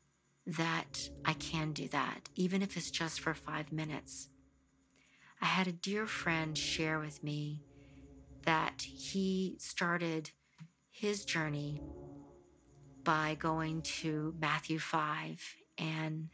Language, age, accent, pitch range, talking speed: English, 50-69, American, 140-170 Hz, 115 wpm